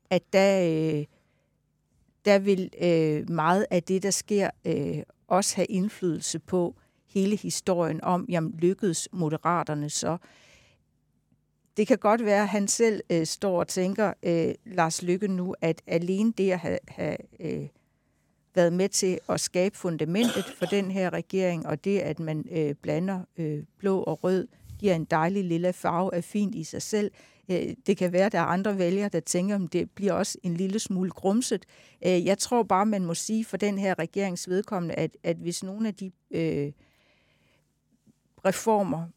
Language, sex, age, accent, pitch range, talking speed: Danish, female, 60-79, native, 170-200 Hz, 155 wpm